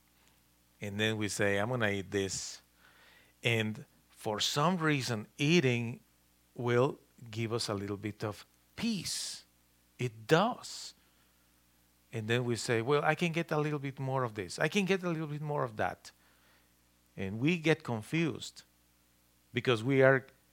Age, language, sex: 50-69, English, male